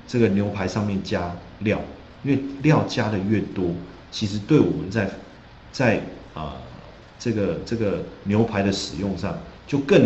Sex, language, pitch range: male, Chinese, 95-115 Hz